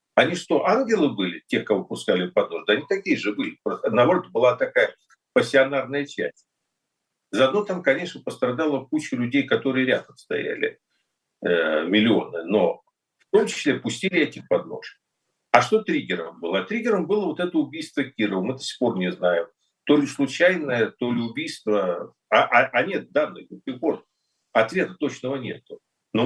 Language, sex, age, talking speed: Russian, male, 50-69, 165 wpm